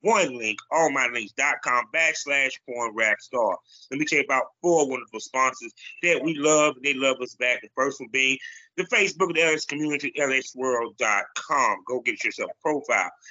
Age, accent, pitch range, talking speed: 30-49, American, 135-180 Hz, 185 wpm